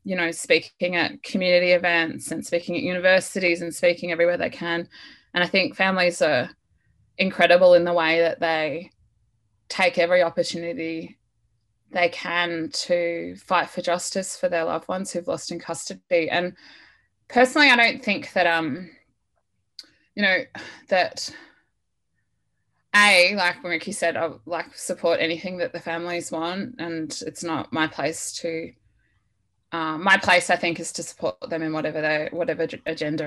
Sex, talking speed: female, 155 wpm